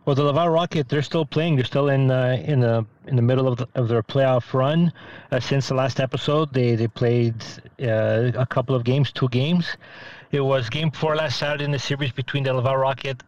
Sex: male